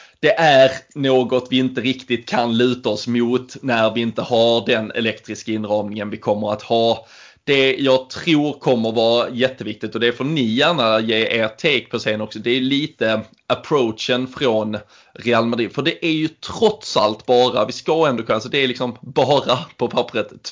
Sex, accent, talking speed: male, native, 185 wpm